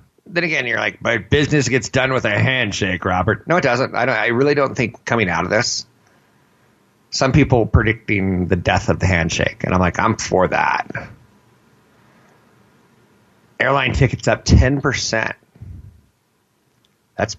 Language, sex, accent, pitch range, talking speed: English, male, American, 95-120 Hz, 150 wpm